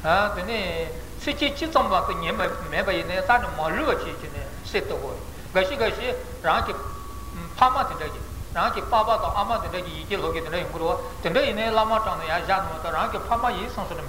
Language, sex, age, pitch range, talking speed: Italian, male, 60-79, 185-245 Hz, 55 wpm